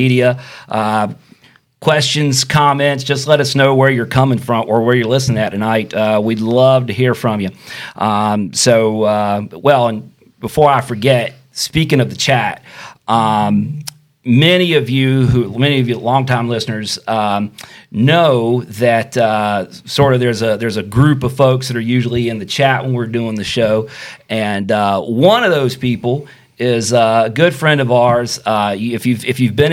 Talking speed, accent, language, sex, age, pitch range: 180 wpm, American, English, male, 40-59, 110-135 Hz